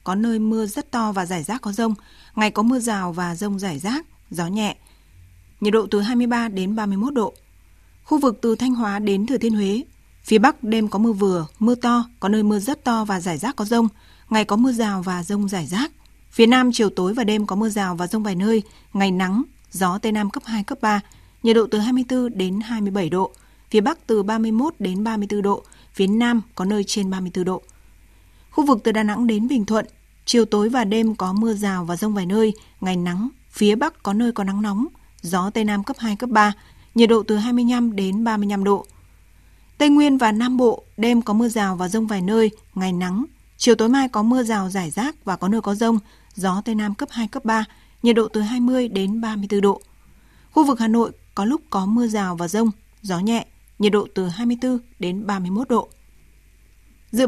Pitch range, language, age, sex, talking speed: 195-235 Hz, Vietnamese, 20-39, female, 220 wpm